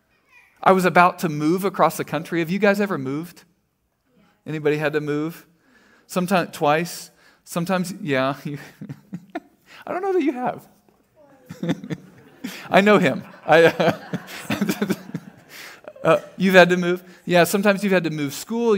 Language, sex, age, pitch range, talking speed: English, male, 40-59, 145-200 Hz, 140 wpm